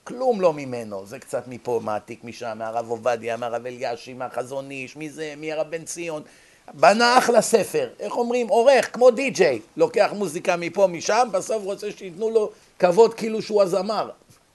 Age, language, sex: 50-69, Hebrew, male